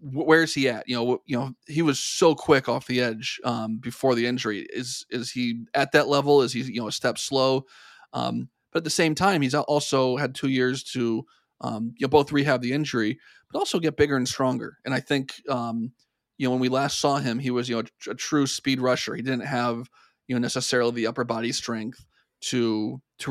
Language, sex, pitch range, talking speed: English, male, 120-140 Hz, 230 wpm